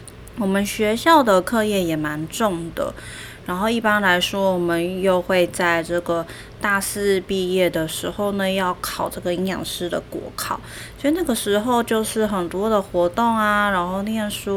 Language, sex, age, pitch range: Chinese, female, 20-39, 175-200 Hz